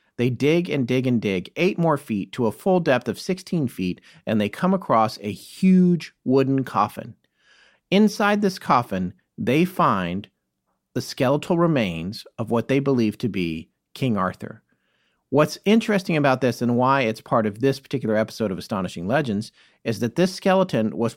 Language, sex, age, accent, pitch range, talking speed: English, male, 40-59, American, 105-155 Hz, 170 wpm